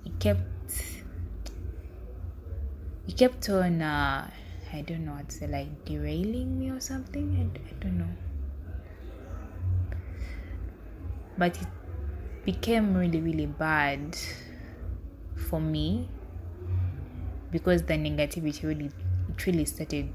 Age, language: 20-39, English